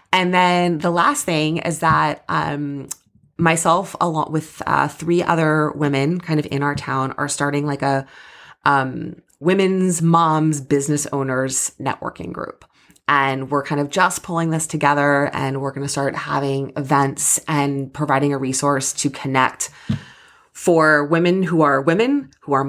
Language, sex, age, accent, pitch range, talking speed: English, female, 20-39, American, 135-155 Hz, 155 wpm